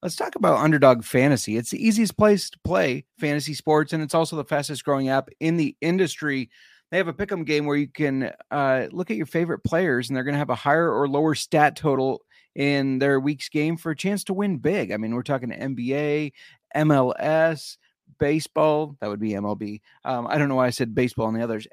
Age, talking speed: 30-49, 225 wpm